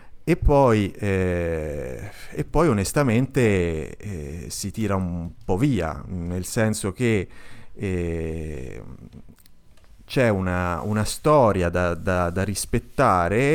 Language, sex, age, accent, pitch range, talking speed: Italian, male, 30-49, native, 85-115 Hz, 105 wpm